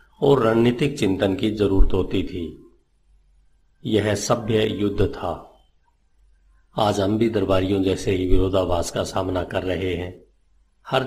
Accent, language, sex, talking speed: native, Hindi, male, 130 wpm